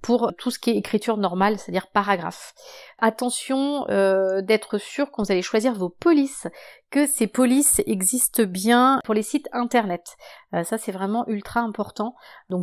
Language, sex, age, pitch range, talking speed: French, female, 30-49, 200-250 Hz, 165 wpm